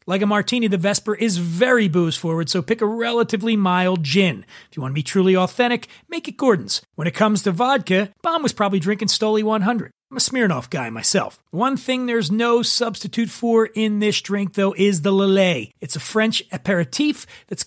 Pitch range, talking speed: 175-230 Hz, 195 wpm